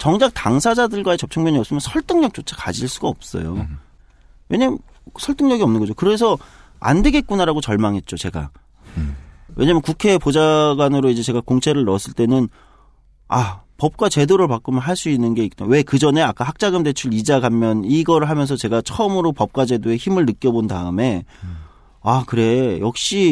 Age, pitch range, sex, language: 40-59, 105-165 Hz, male, Korean